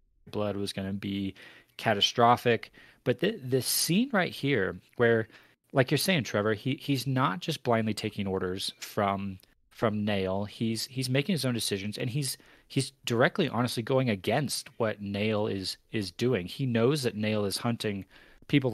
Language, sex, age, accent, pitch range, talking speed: English, male, 30-49, American, 105-130 Hz, 165 wpm